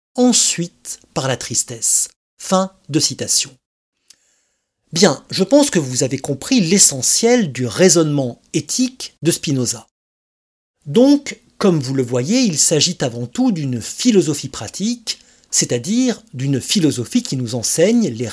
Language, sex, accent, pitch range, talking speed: French, male, French, 130-220 Hz, 130 wpm